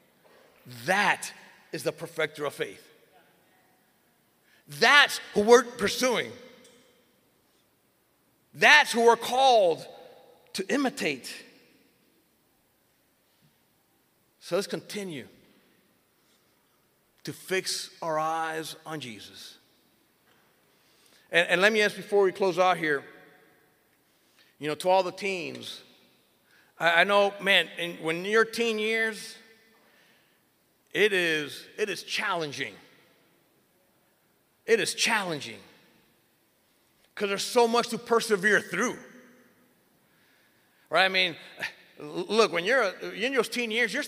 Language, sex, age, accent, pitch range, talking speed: English, male, 50-69, American, 180-255 Hz, 100 wpm